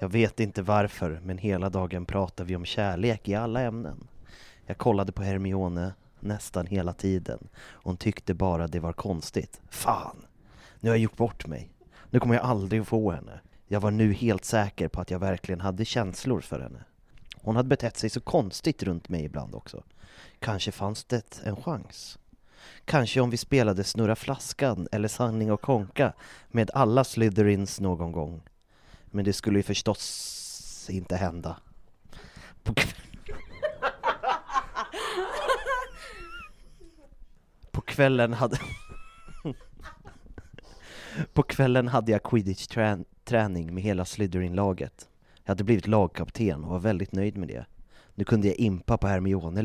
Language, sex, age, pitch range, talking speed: Swedish, male, 30-49, 90-115 Hz, 145 wpm